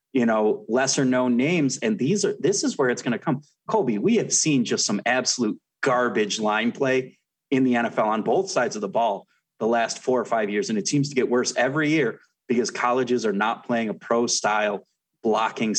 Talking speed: 215 wpm